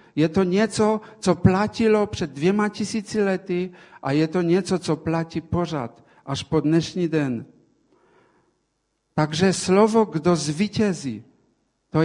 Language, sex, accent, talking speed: Czech, male, Polish, 125 wpm